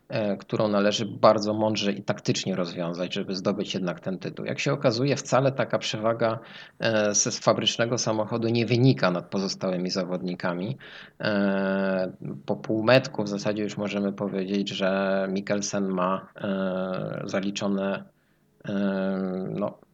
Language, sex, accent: Polish, male, native